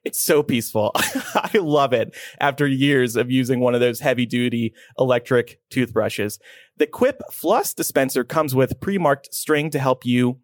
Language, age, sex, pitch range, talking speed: English, 30-49, male, 125-185 Hz, 160 wpm